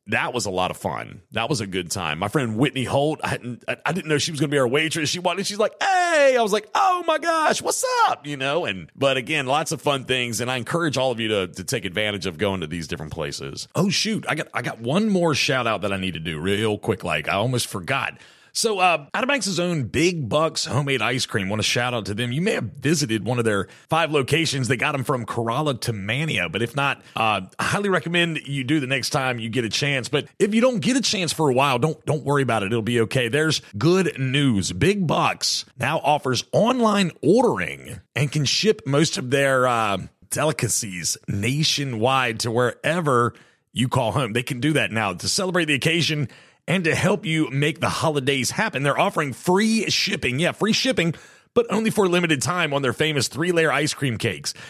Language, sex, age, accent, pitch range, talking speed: English, male, 30-49, American, 120-165 Hz, 230 wpm